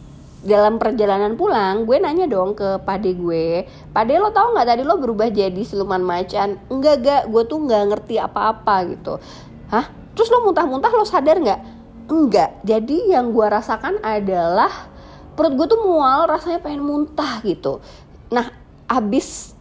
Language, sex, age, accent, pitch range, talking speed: Indonesian, female, 30-49, native, 190-255 Hz, 150 wpm